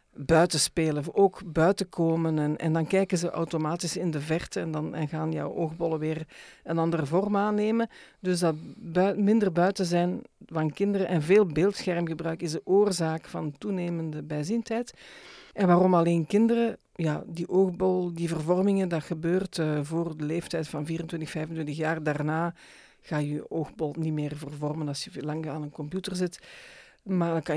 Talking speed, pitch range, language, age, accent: 170 wpm, 155-185 Hz, Dutch, 50-69, Dutch